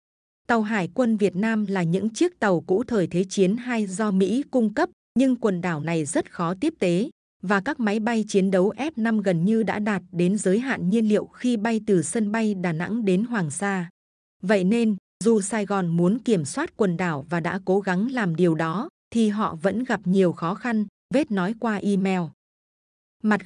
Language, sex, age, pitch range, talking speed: Vietnamese, female, 20-39, 185-225 Hz, 205 wpm